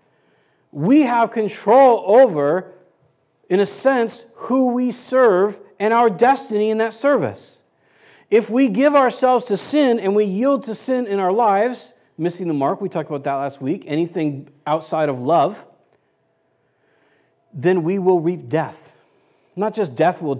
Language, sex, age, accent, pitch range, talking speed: English, male, 50-69, American, 135-185 Hz, 155 wpm